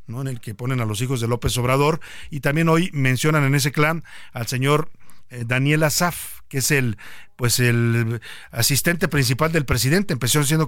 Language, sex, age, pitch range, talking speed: Spanish, male, 50-69, 120-150 Hz, 190 wpm